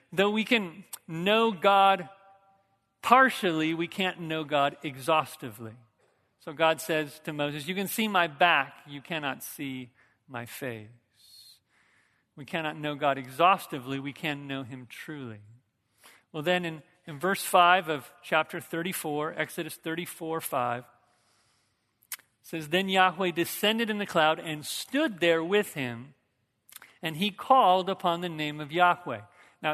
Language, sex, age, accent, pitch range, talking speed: English, male, 50-69, American, 145-185 Hz, 140 wpm